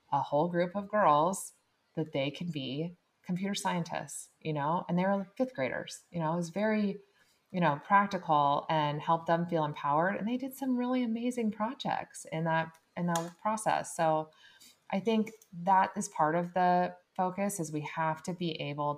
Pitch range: 145-175 Hz